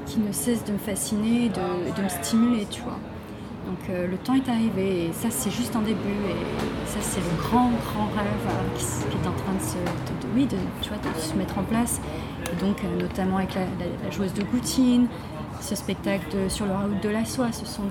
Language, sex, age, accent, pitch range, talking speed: French, female, 30-49, French, 170-235 Hz, 240 wpm